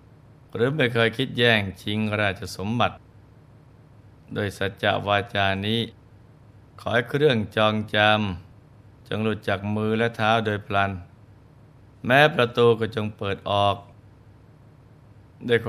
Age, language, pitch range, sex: 20-39, Thai, 105-115 Hz, male